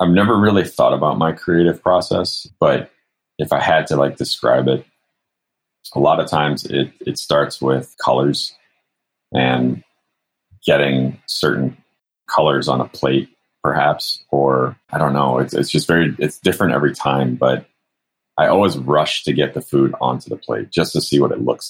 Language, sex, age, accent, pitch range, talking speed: English, male, 30-49, American, 65-75 Hz, 170 wpm